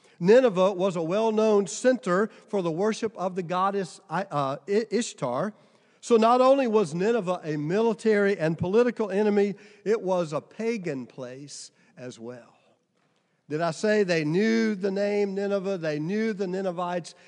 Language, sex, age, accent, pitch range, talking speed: English, male, 50-69, American, 175-245 Hz, 140 wpm